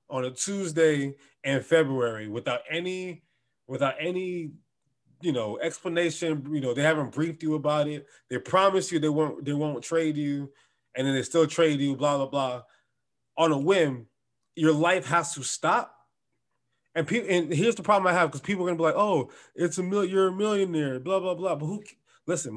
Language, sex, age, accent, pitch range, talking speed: English, male, 20-39, American, 140-180 Hz, 195 wpm